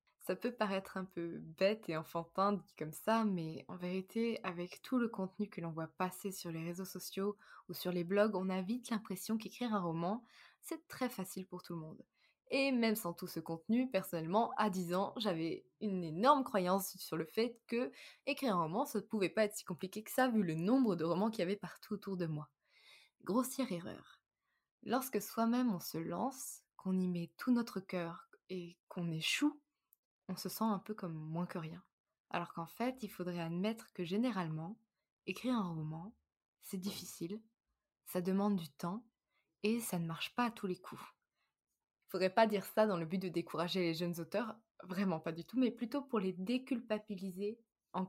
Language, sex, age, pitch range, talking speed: French, female, 20-39, 175-220 Hz, 200 wpm